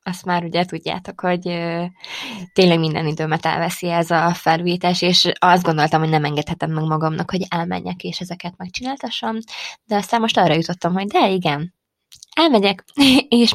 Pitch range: 165-205 Hz